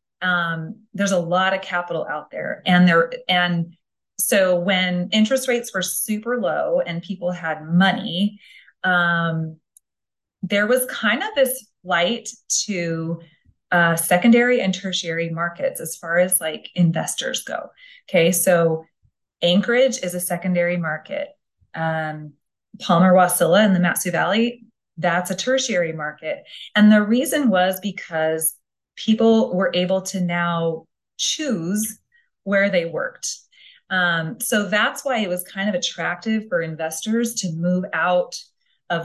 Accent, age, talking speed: American, 30-49, 135 wpm